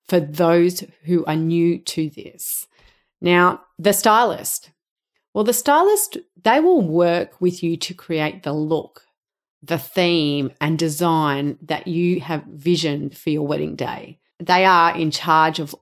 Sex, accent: female, Australian